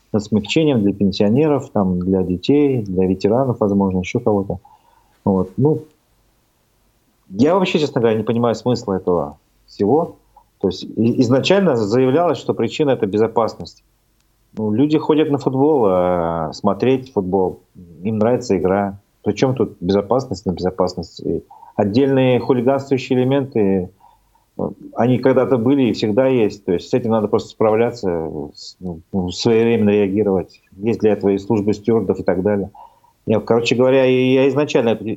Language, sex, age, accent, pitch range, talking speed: Russian, male, 40-59, native, 100-135 Hz, 135 wpm